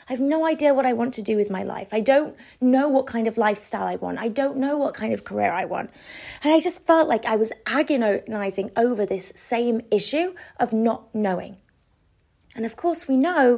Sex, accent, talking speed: female, British, 220 wpm